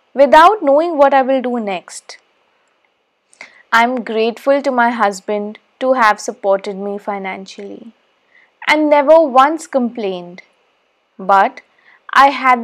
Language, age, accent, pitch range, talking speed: English, 20-39, Indian, 210-280 Hz, 120 wpm